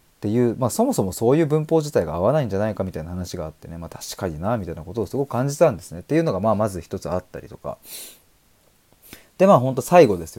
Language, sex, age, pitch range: Japanese, male, 20-39, 90-120 Hz